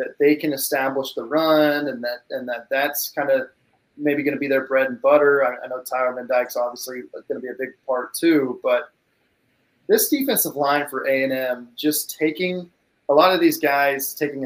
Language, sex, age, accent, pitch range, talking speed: English, male, 20-39, American, 130-150 Hz, 205 wpm